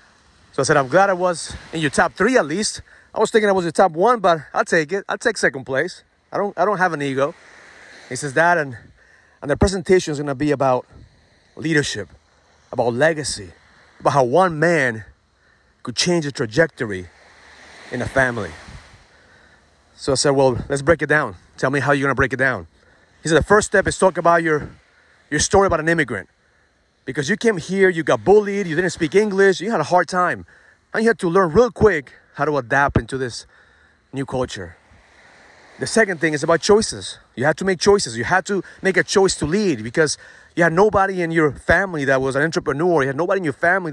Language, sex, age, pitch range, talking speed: English, male, 30-49, 115-180 Hz, 215 wpm